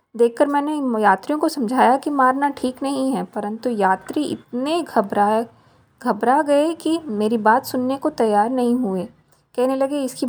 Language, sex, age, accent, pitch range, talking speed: Hindi, female, 20-39, native, 220-280 Hz, 165 wpm